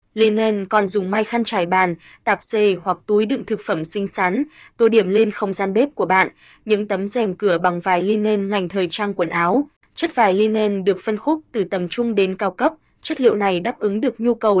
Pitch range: 190-225 Hz